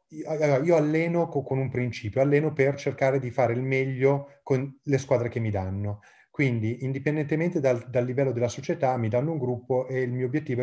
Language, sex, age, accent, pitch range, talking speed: Italian, male, 30-49, native, 115-135 Hz, 185 wpm